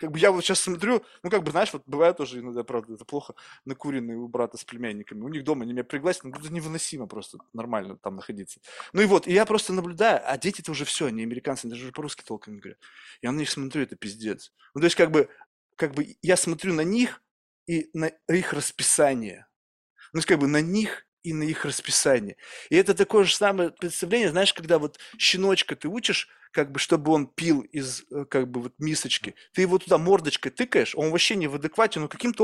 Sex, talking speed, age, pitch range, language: male, 220 wpm, 20-39, 135-185 Hz, Russian